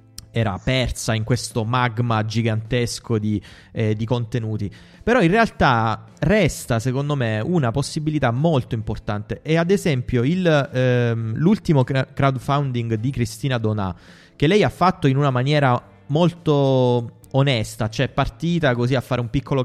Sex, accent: male, native